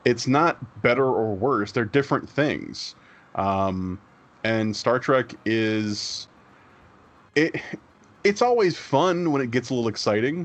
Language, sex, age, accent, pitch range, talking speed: English, male, 20-39, American, 105-135 Hz, 130 wpm